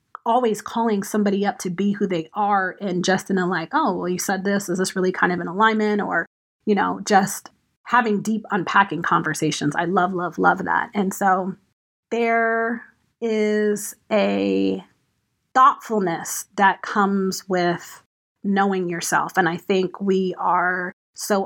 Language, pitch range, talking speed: English, 185-215 Hz, 155 wpm